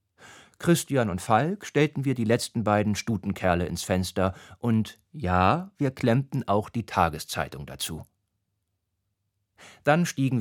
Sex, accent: male, German